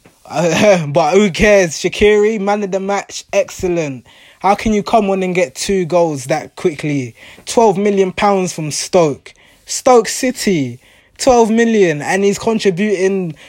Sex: male